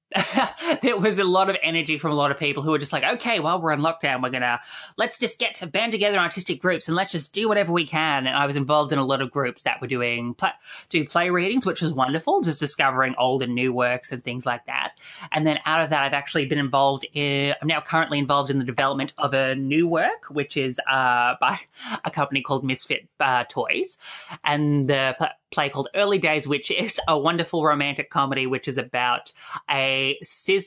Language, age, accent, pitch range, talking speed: English, 20-39, Australian, 135-165 Hz, 225 wpm